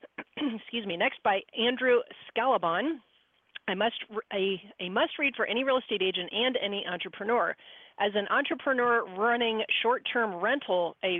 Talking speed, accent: 155 wpm, American